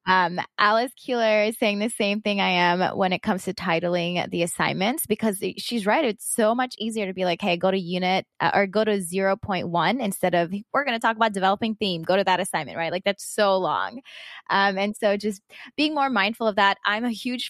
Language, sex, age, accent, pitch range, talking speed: English, female, 20-39, American, 180-220 Hz, 225 wpm